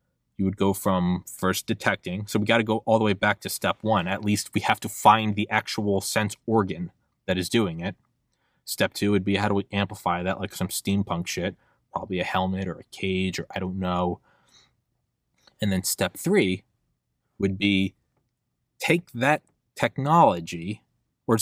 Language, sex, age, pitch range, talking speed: English, male, 20-39, 95-115 Hz, 180 wpm